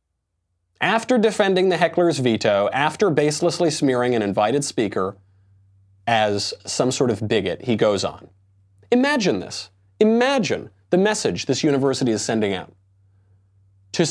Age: 30-49